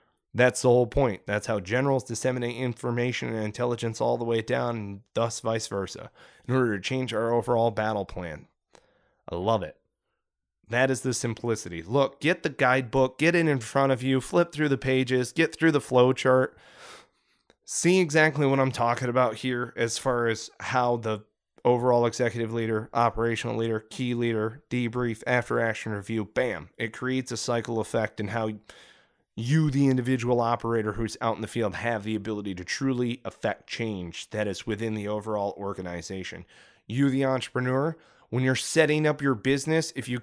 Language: English